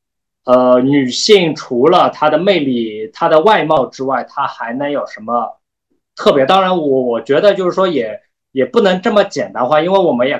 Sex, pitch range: male, 135-175 Hz